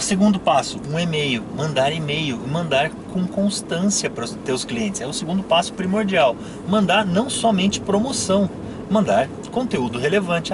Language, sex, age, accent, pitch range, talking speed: Portuguese, male, 30-49, Brazilian, 145-205 Hz, 150 wpm